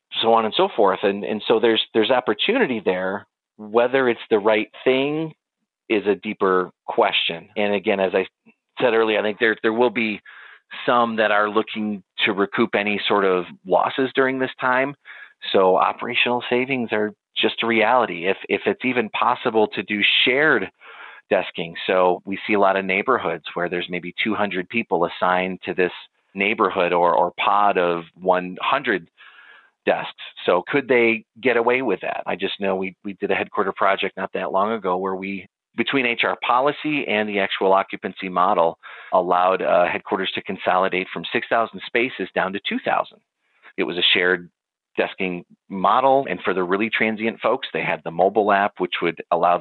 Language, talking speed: English, 180 wpm